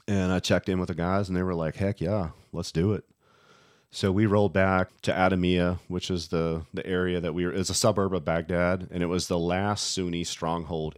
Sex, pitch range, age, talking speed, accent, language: male, 85-105 Hz, 40-59, 235 wpm, American, English